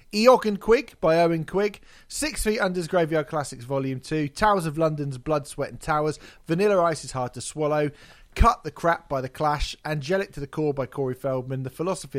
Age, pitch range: 30-49, 125-165 Hz